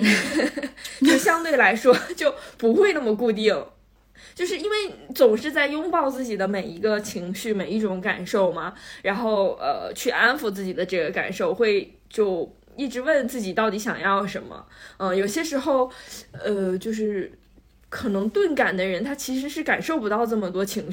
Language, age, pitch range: Chinese, 20-39, 205-270 Hz